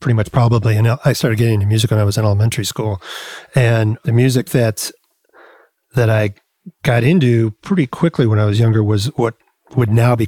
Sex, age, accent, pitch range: male, 40-59, American, 110-130 Hz